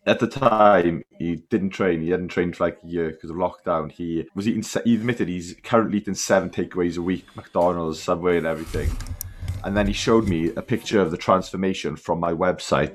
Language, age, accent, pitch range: English, 20-39, British, 90-120 Hz